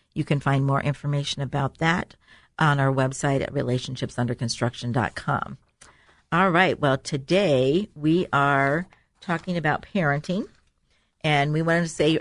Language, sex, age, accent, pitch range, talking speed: English, female, 50-69, American, 140-165 Hz, 130 wpm